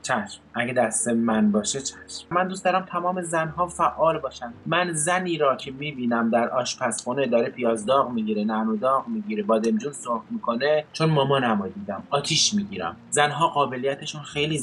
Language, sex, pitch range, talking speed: English, male, 120-180 Hz, 155 wpm